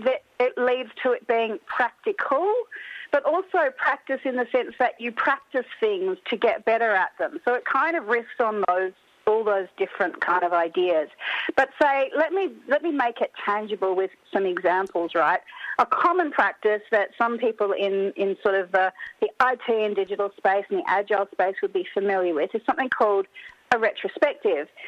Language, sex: English, female